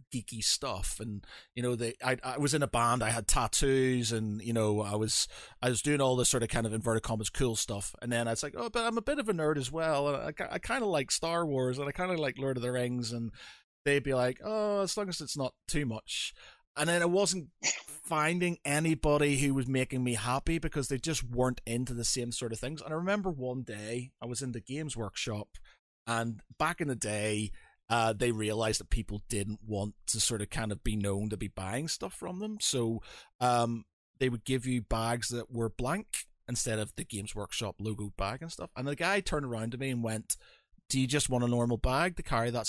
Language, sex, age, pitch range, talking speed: English, male, 30-49, 110-145 Hz, 240 wpm